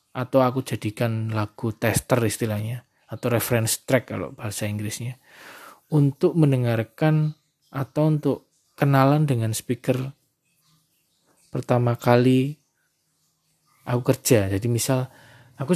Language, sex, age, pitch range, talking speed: Indonesian, male, 20-39, 115-145 Hz, 100 wpm